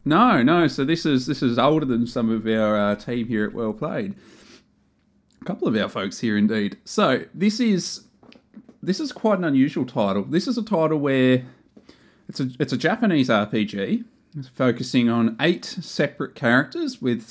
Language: English